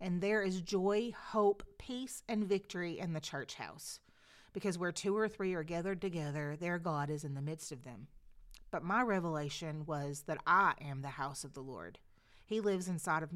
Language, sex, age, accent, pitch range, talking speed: English, female, 30-49, American, 155-210 Hz, 200 wpm